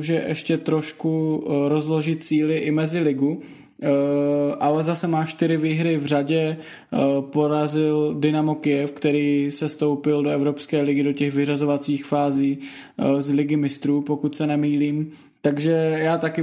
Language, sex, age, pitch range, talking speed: Czech, male, 20-39, 140-155 Hz, 140 wpm